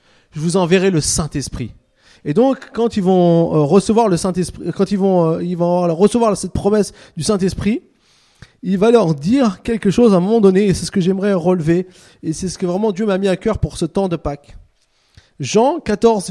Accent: French